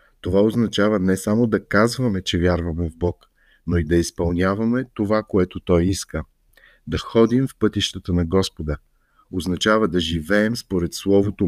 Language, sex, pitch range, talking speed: Bulgarian, male, 90-115 Hz, 150 wpm